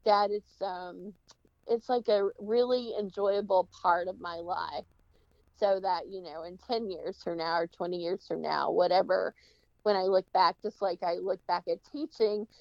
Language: English